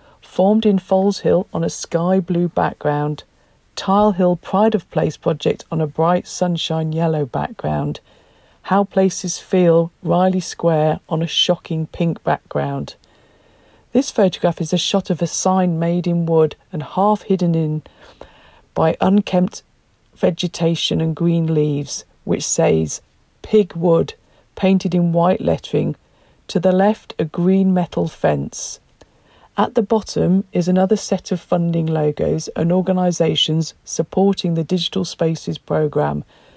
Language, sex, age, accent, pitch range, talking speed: English, female, 50-69, British, 160-190 Hz, 135 wpm